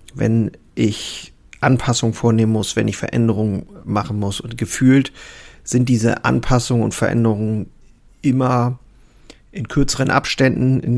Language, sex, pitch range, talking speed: German, male, 105-120 Hz, 120 wpm